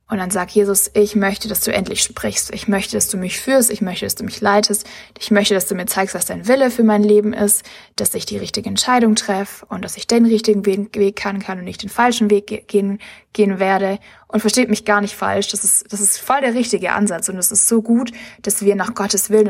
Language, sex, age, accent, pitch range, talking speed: German, female, 20-39, German, 195-220 Hz, 245 wpm